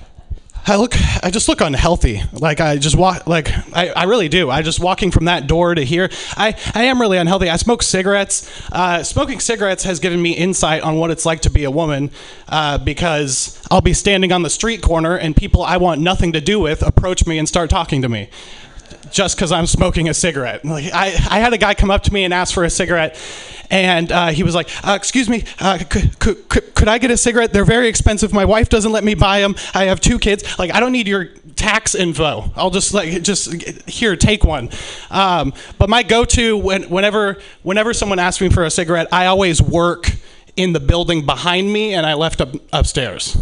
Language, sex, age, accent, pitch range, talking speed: English, male, 20-39, American, 155-195 Hz, 225 wpm